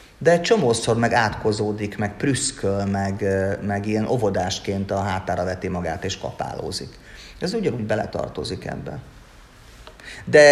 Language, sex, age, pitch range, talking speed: Hungarian, male, 30-49, 105-120 Hz, 125 wpm